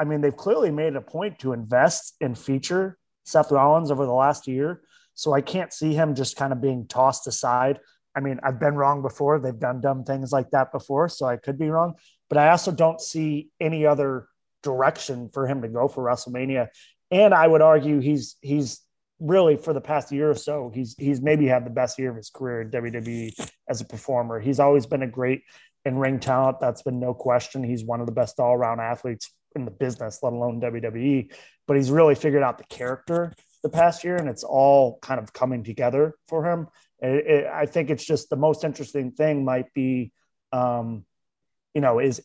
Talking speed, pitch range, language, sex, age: 205 wpm, 125-155 Hz, English, male, 30-49